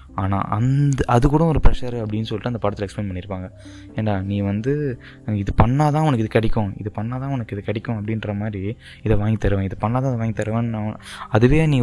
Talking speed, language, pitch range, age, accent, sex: 190 wpm, Tamil, 100-130 Hz, 20-39, native, male